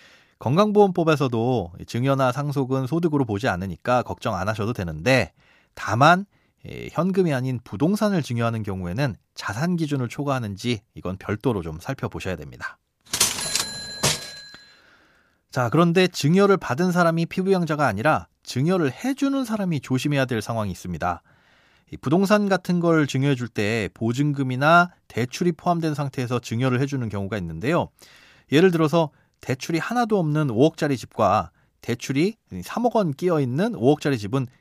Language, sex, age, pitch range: Korean, male, 30-49, 115-165 Hz